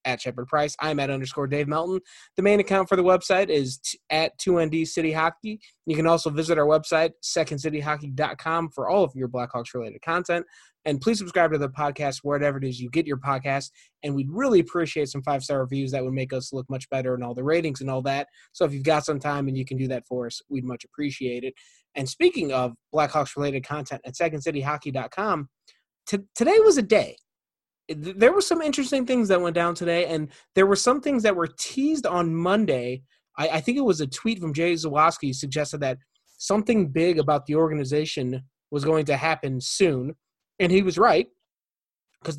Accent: American